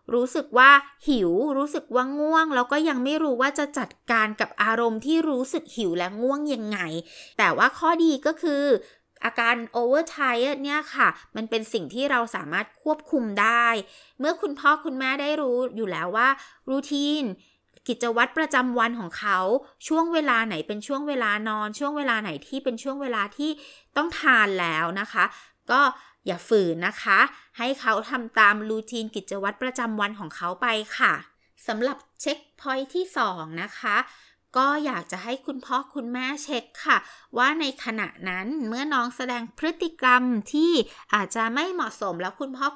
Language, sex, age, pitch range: Thai, female, 20-39, 220-285 Hz